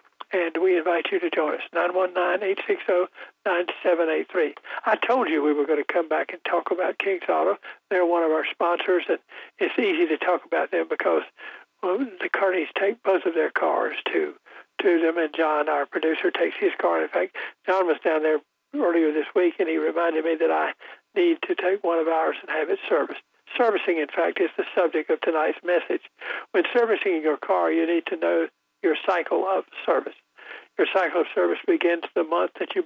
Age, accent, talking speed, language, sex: 60-79, American, 210 wpm, English, male